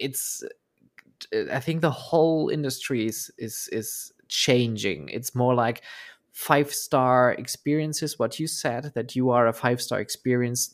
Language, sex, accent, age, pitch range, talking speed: German, male, German, 20-39, 115-130 Hz, 135 wpm